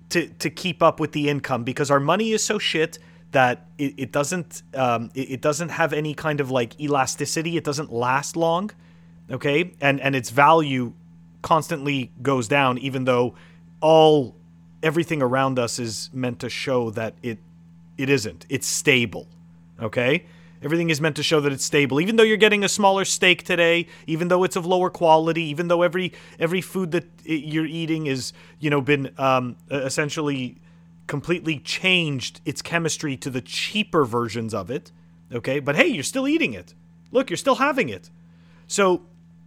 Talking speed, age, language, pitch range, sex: 175 wpm, 30-49, English, 125-165 Hz, male